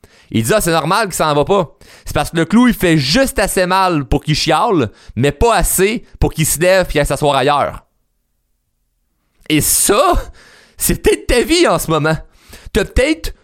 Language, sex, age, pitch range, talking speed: French, male, 30-49, 145-195 Hz, 200 wpm